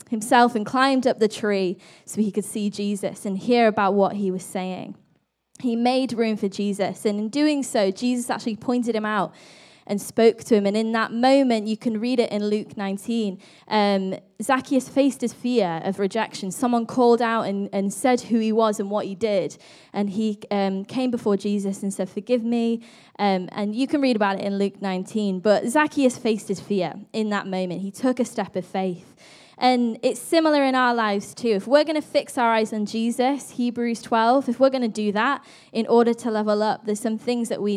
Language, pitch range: English, 205-255 Hz